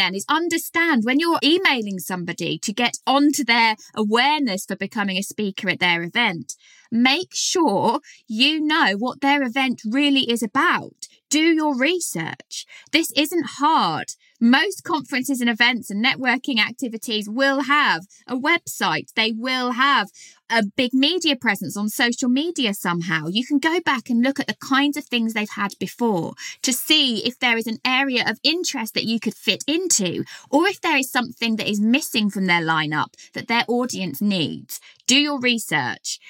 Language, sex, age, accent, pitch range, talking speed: English, female, 20-39, British, 215-280 Hz, 170 wpm